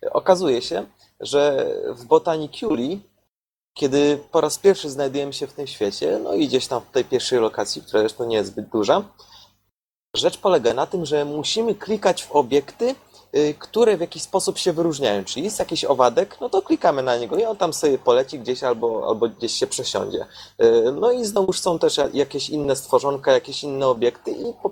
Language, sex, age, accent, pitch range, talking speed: Polish, male, 30-49, native, 140-225 Hz, 185 wpm